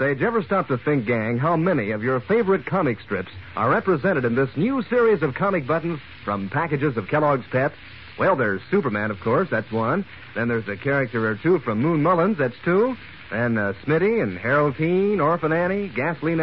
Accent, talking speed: American, 200 wpm